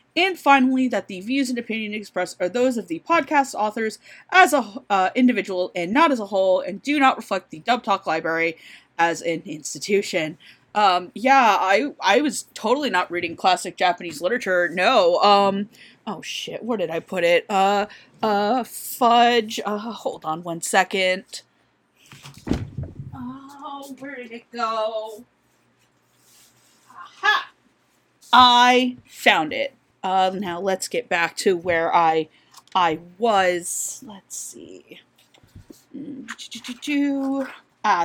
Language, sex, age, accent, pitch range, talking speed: English, female, 30-49, American, 175-255 Hz, 130 wpm